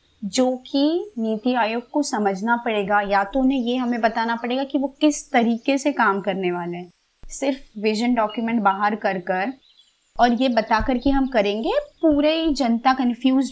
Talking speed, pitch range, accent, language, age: 175 wpm, 210-260 Hz, native, Hindi, 20-39